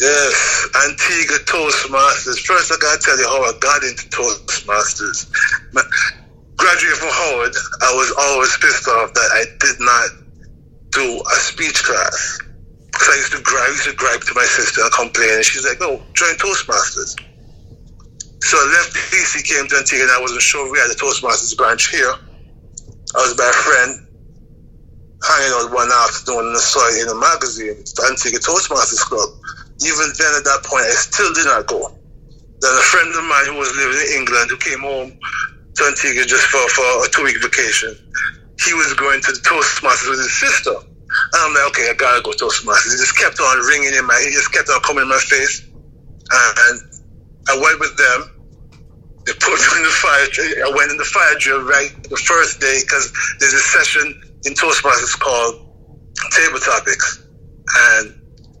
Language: English